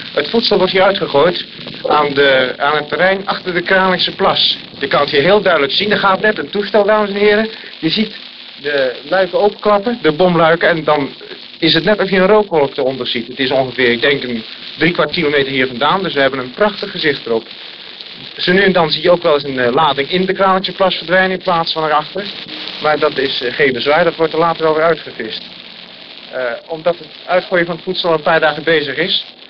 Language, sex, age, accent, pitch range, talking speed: Dutch, male, 40-59, Dutch, 150-200 Hz, 225 wpm